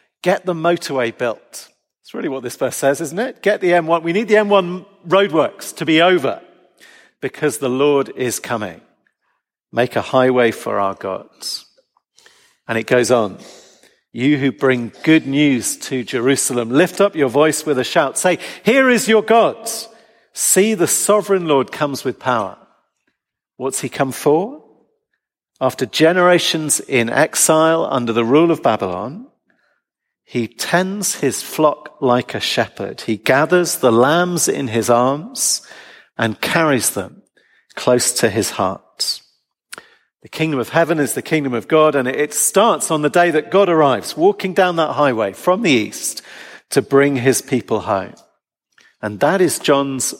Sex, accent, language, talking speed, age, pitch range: male, British, English, 160 wpm, 50-69, 130-190 Hz